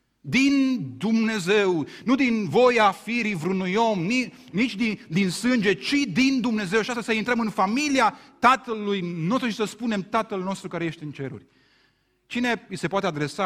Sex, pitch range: male, 135-190 Hz